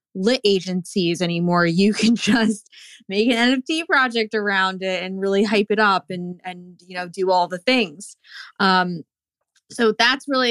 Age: 20-39